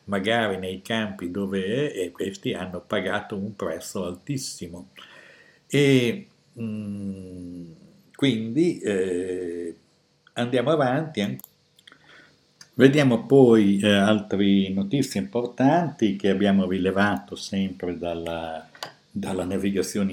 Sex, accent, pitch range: male, native, 95-110 Hz